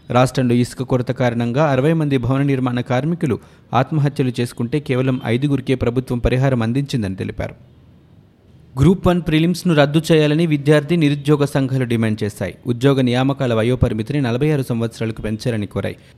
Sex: male